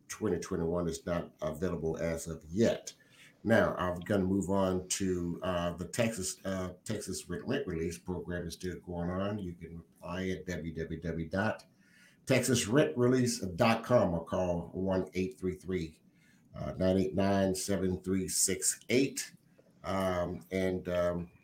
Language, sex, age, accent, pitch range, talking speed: English, male, 60-79, American, 85-100 Hz, 105 wpm